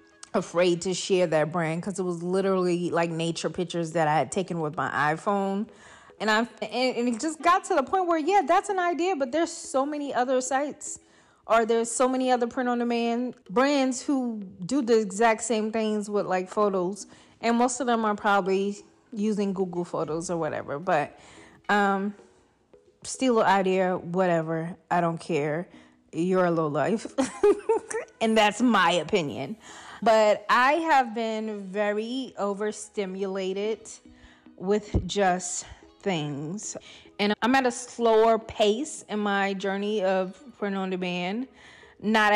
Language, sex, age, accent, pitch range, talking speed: English, female, 20-39, American, 180-230 Hz, 155 wpm